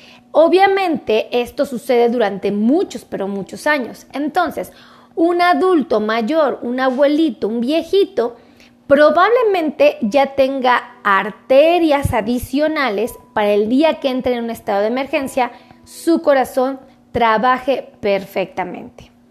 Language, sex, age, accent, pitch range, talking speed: Spanish, female, 30-49, Mexican, 230-295 Hz, 110 wpm